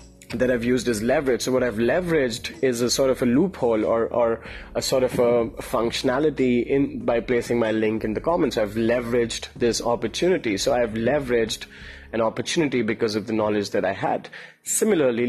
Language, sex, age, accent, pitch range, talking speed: English, male, 30-49, Indian, 110-130 Hz, 185 wpm